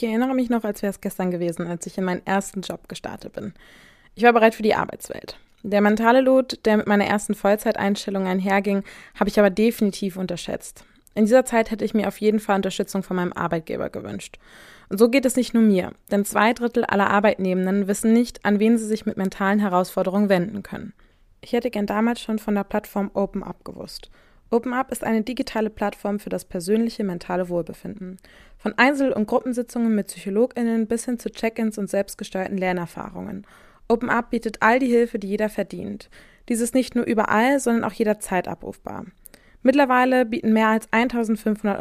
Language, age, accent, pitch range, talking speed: German, 20-39, German, 195-230 Hz, 185 wpm